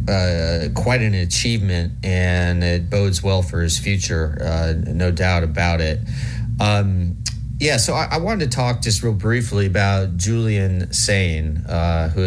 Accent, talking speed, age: American, 155 wpm, 30-49